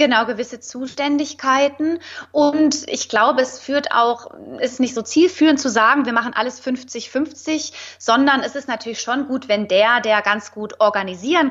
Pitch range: 220-285 Hz